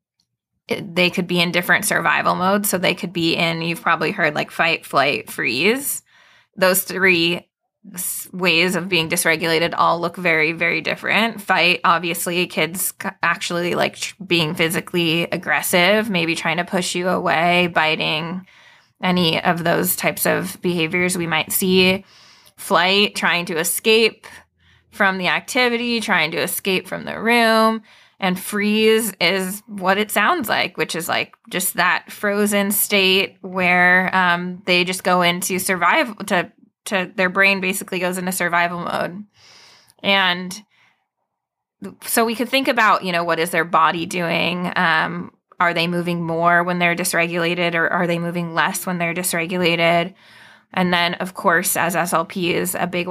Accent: American